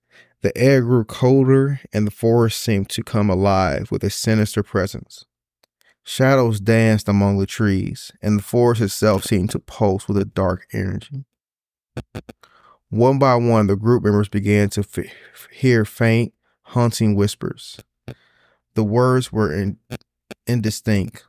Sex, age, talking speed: male, 20-39, 130 wpm